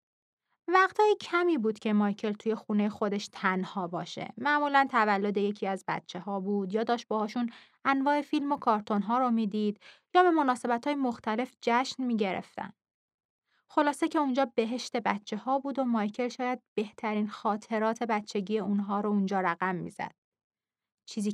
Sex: female